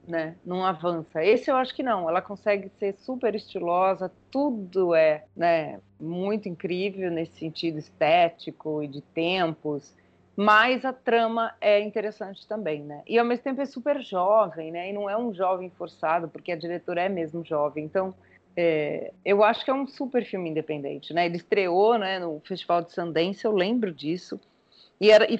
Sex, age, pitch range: female, 30-49, 170-225 Hz